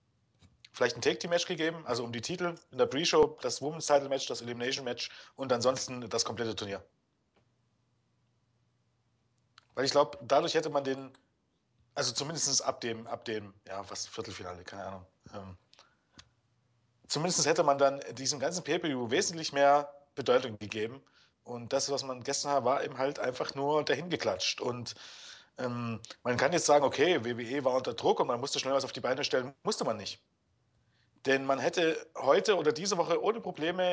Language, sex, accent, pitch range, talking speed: German, male, German, 120-150 Hz, 170 wpm